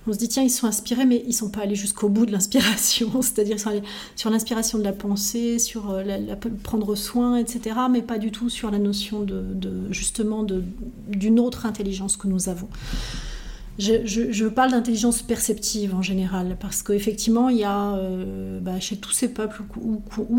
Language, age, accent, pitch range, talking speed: French, 40-59, French, 200-230 Hz, 205 wpm